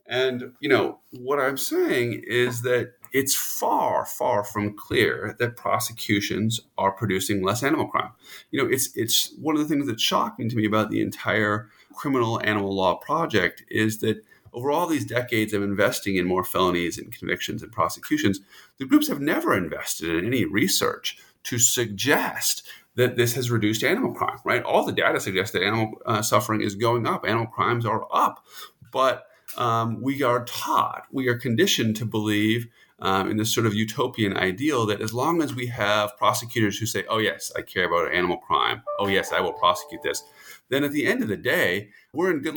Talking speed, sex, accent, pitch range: 190 wpm, male, American, 105-125 Hz